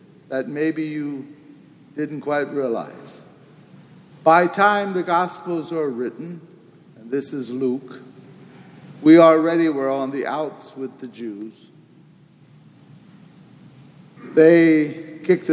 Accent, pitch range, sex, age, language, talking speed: American, 140-175 Hz, male, 60-79, English, 105 wpm